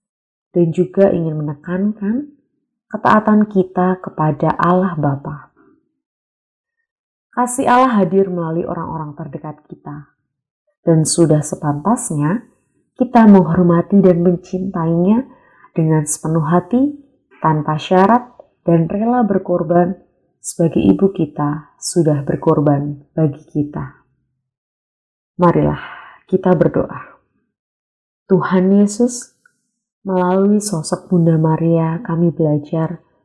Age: 20-39